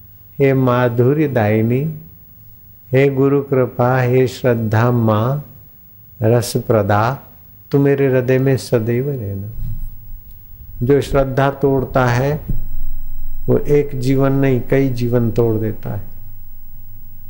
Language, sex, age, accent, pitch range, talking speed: Hindi, male, 50-69, native, 105-130 Hz, 105 wpm